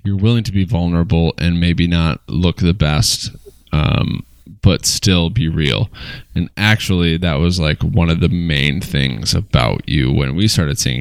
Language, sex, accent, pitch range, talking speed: English, male, American, 85-105 Hz, 175 wpm